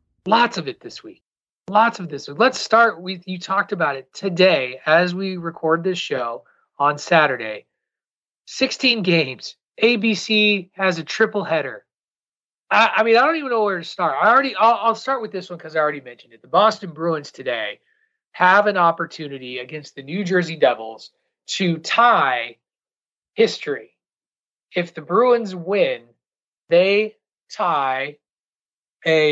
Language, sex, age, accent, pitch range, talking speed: English, male, 30-49, American, 135-205 Hz, 155 wpm